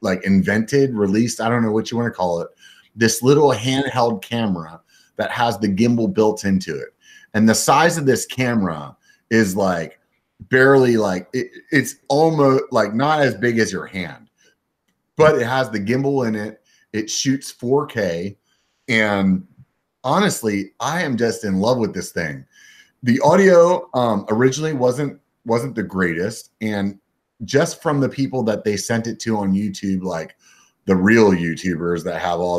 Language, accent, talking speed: English, American, 165 wpm